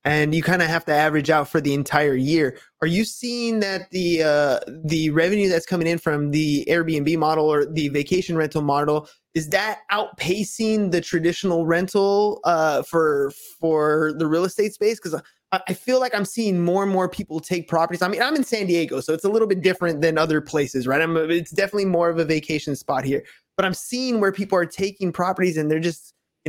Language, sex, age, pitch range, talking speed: English, male, 20-39, 155-195 Hz, 215 wpm